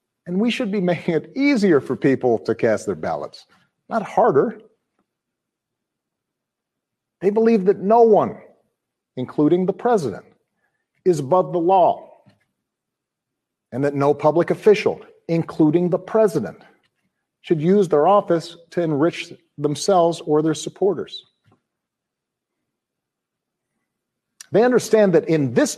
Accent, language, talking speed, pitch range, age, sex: American, English, 115 wpm, 155-205 Hz, 50-69, male